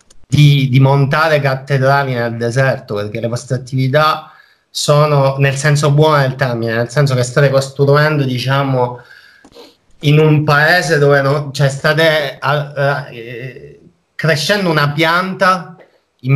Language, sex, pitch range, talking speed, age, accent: Italian, male, 120-150 Hz, 130 wpm, 30-49, native